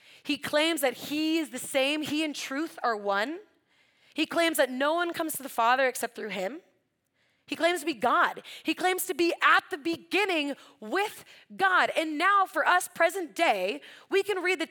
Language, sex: English, female